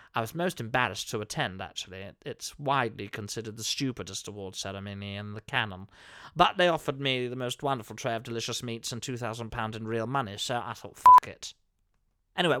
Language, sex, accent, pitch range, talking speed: English, male, British, 115-175 Hz, 185 wpm